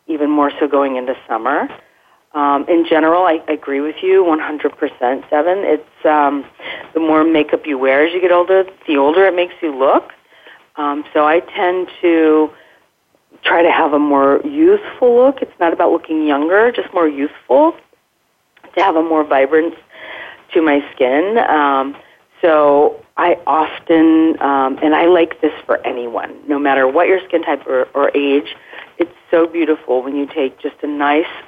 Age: 40-59